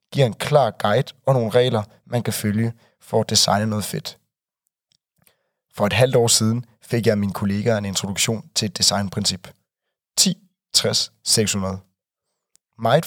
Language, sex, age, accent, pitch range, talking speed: Danish, male, 30-49, native, 105-130 Hz, 145 wpm